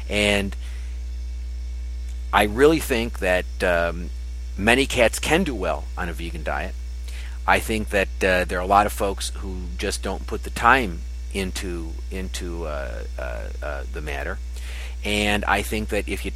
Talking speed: 160 wpm